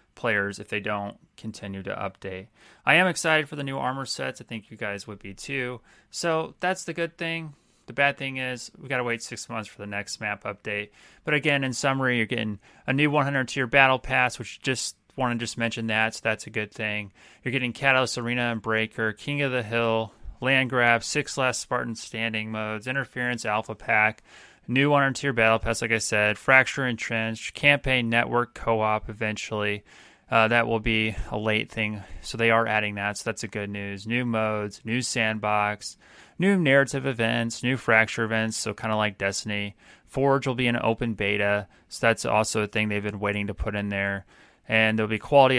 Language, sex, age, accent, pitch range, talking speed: English, male, 30-49, American, 105-130 Hz, 205 wpm